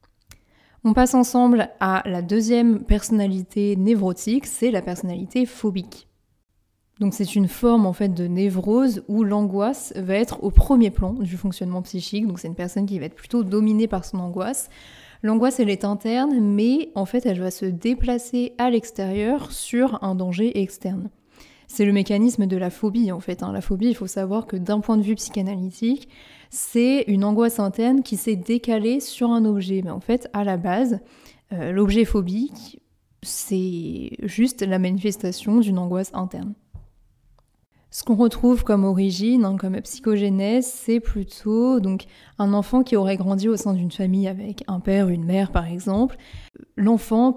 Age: 20-39